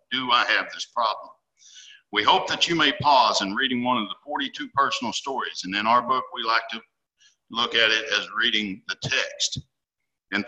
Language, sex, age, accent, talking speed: English, male, 60-79, American, 195 wpm